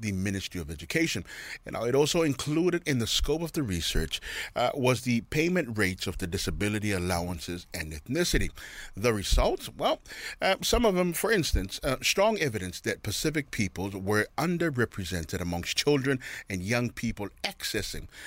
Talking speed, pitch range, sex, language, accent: 160 wpm, 95-125 Hz, male, English, American